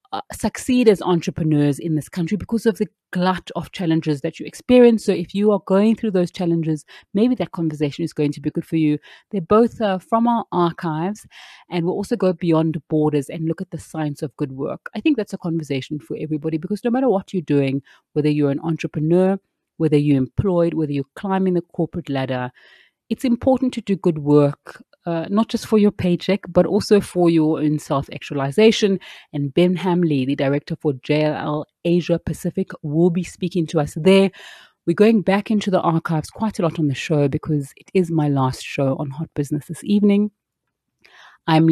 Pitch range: 150-190 Hz